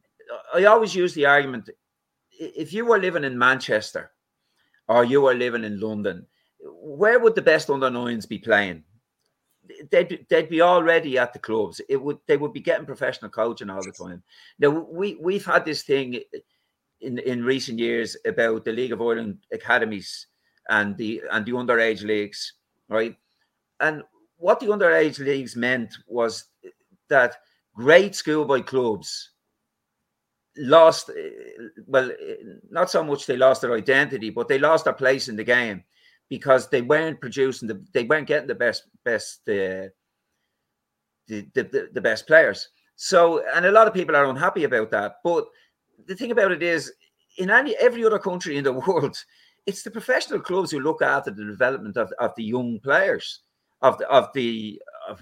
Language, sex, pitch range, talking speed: English, male, 115-185 Hz, 170 wpm